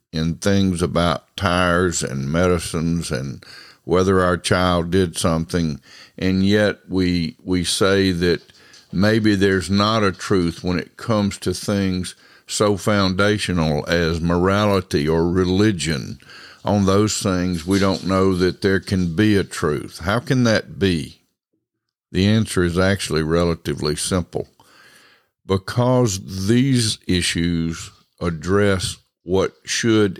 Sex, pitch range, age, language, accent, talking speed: male, 85-100 Hz, 60-79, English, American, 125 wpm